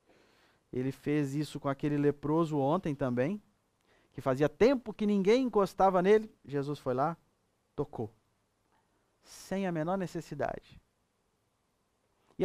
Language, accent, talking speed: Portuguese, Brazilian, 115 wpm